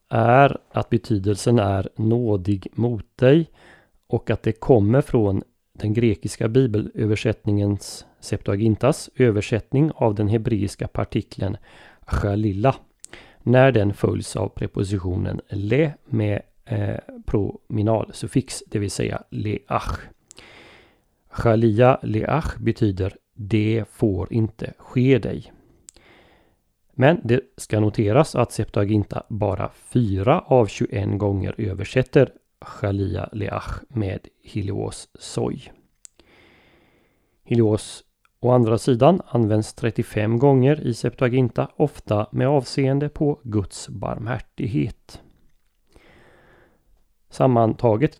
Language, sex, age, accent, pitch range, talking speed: Swedish, male, 30-49, native, 105-125 Hz, 95 wpm